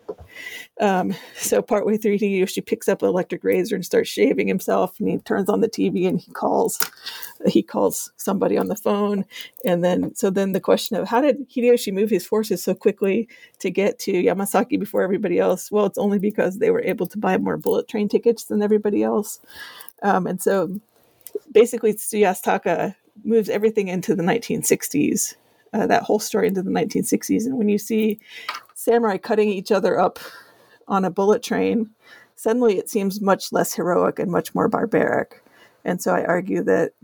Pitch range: 190-230 Hz